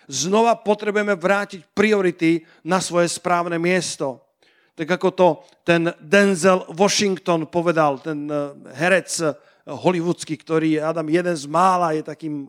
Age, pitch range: 50-69, 145-175 Hz